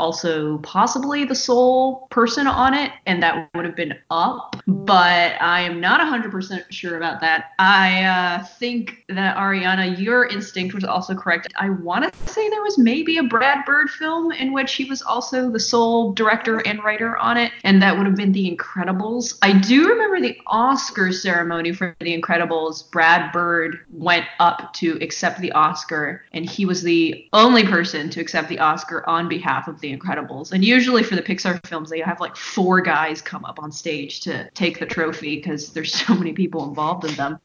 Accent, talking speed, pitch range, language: American, 190 wpm, 165-235 Hz, English